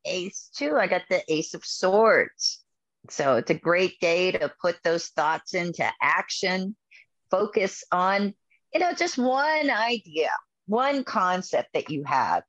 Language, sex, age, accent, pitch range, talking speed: English, female, 40-59, American, 165-210 Hz, 150 wpm